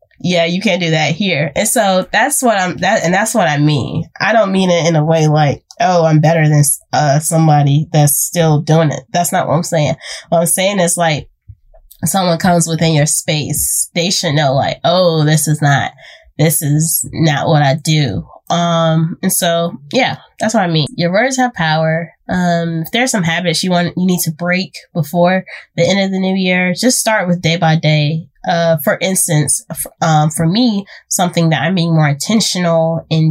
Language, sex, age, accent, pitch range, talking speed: English, female, 10-29, American, 155-180 Hz, 205 wpm